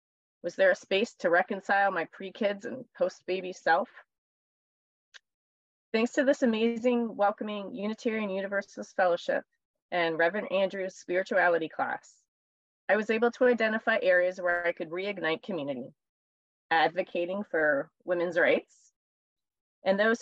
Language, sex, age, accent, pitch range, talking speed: English, female, 30-49, American, 180-235 Hz, 120 wpm